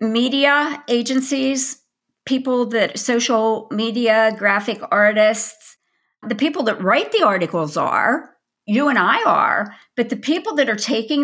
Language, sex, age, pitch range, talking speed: English, female, 50-69, 210-285 Hz, 135 wpm